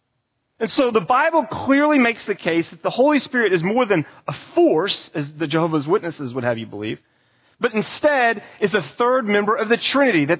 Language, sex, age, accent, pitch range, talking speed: English, male, 40-59, American, 130-205 Hz, 200 wpm